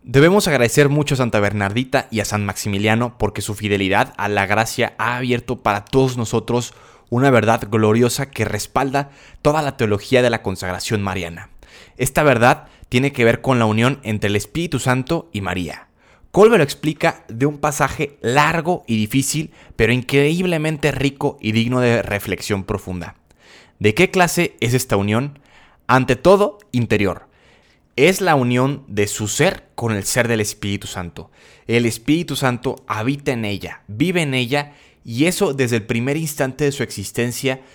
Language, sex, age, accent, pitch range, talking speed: Spanish, male, 20-39, Mexican, 105-145 Hz, 165 wpm